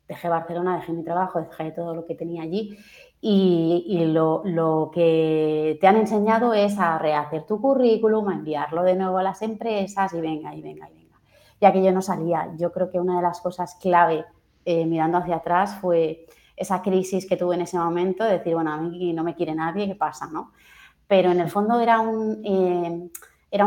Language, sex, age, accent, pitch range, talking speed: Spanish, female, 30-49, Spanish, 165-195 Hz, 200 wpm